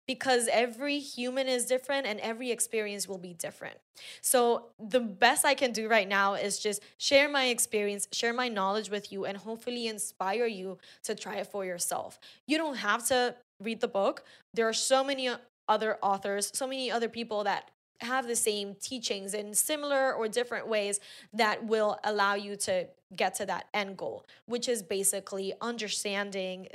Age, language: 10-29, English